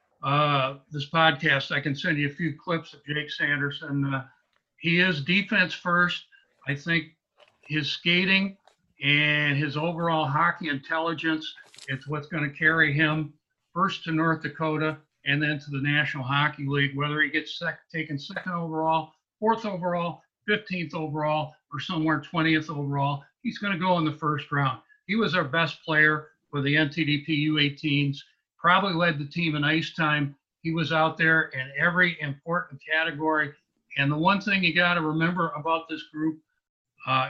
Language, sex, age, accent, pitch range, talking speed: English, male, 60-79, American, 145-175 Hz, 165 wpm